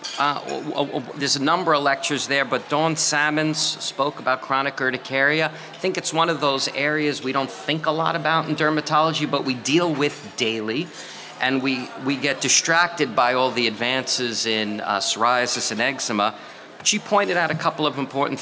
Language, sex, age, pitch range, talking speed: English, male, 40-59, 125-155 Hz, 190 wpm